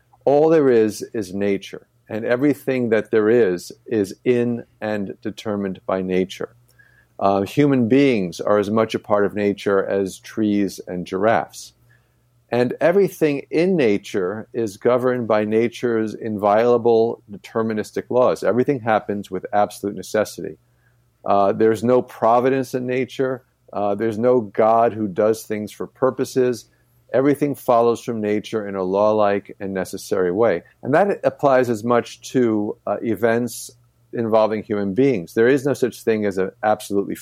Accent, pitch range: American, 100-125 Hz